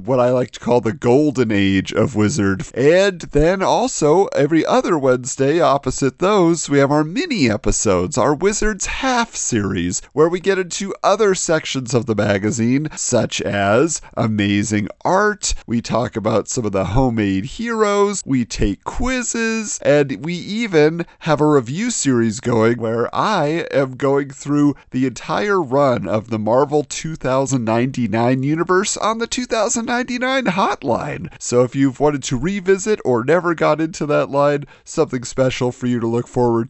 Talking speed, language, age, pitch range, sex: 155 wpm, English, 40-59, 125-180 Hz, male